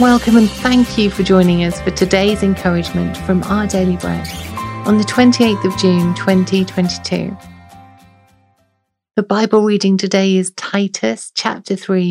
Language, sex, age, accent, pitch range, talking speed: English, female, 40-59, British, 180-215 Hz, 140 wpm